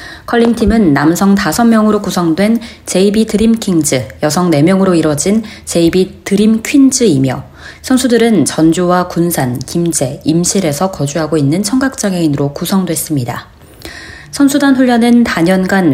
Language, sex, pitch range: Korean, female, 160-225 Hz